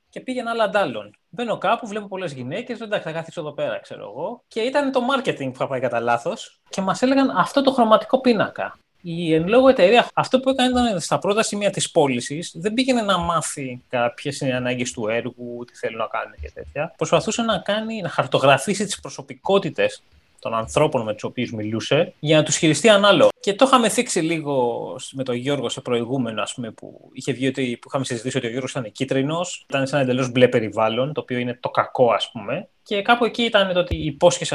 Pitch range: 130-210 Hz